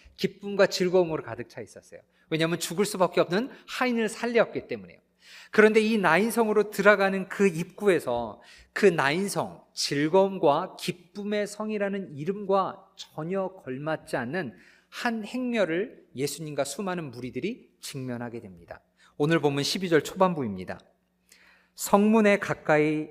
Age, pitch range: 40-59, 140-200 Hz